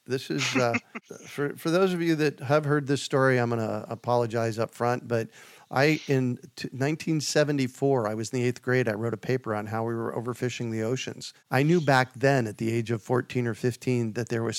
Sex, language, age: male, English, 40-59